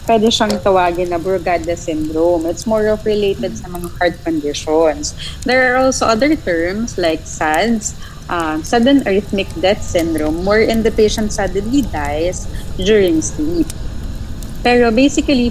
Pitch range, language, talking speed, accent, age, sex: 165-220 Hz, Filipino, 140 wpm, native, 20-39, female